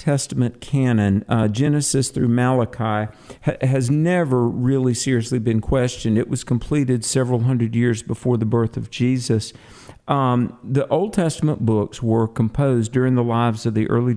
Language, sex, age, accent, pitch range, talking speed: English, male, 50-69, American, 115-135 Hz, 155 wpm